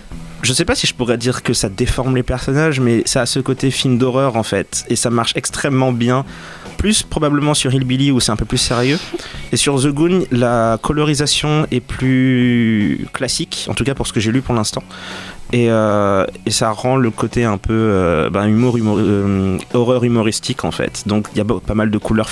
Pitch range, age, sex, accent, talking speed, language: 110-130 Hz, 20-39, male, French, 220 wpm, French